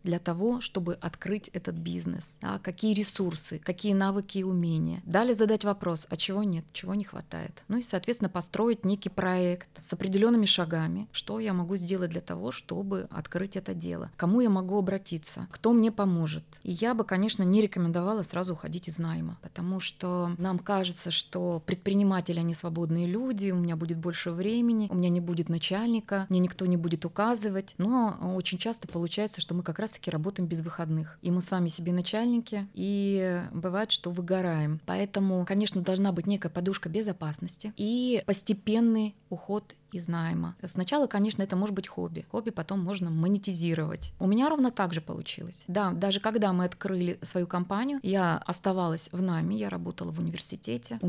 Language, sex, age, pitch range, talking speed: Russian, female, 20-39, 170-200 Hz, 170 wpm